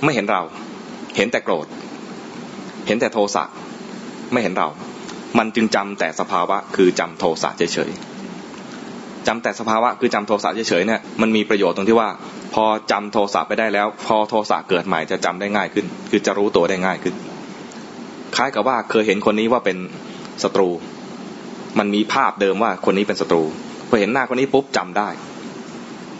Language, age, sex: English, 20-39, male